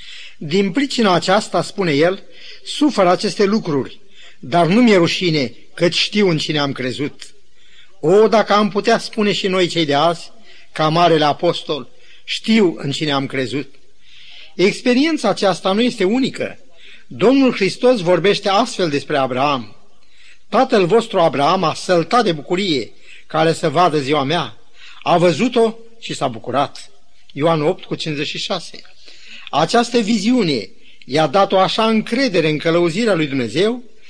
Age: 30-49